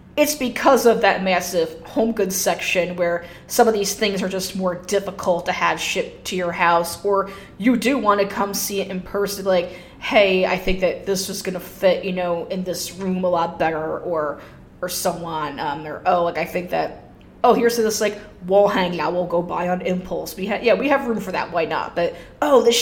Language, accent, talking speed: English, American, 225 wpm